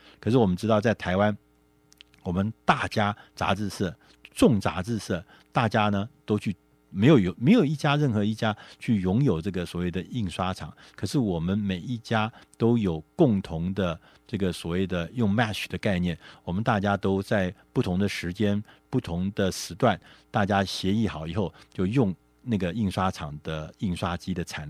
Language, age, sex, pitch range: Chinese, 50-69, male, 90-115 Hz